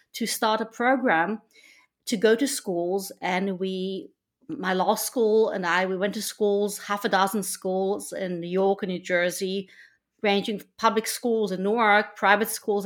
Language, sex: English, female